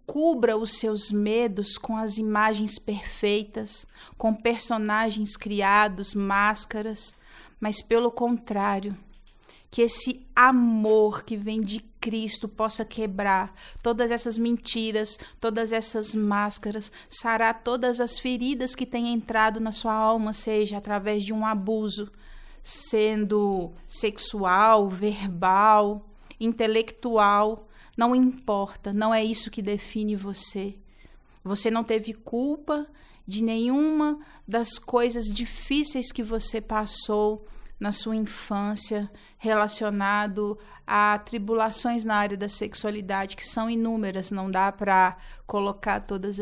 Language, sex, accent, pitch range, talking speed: Portuguese, female, Brazilian, 205-230 Hz, 110 wpm